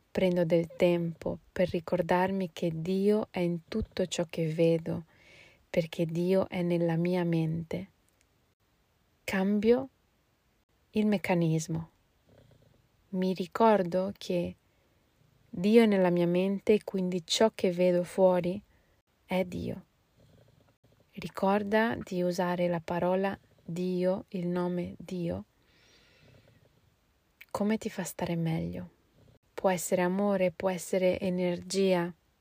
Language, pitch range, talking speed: Italian, 170-195 Hz, 105 wpm